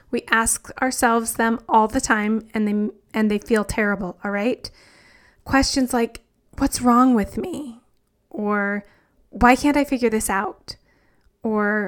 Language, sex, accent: English, female, American